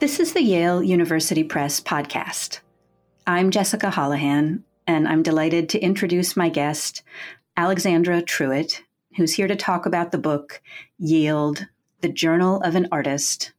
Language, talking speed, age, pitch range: English, 140 wpm, 40-59, 150-185 Hz